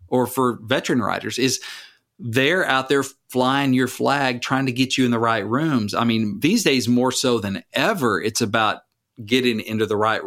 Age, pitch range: 40-59, 110-130 Hz